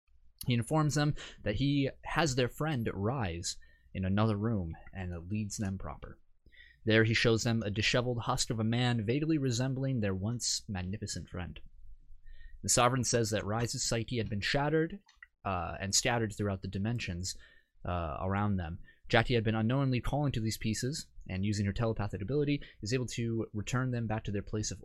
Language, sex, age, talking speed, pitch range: English, male, 20-39, 175 wpm, 95-120 Hz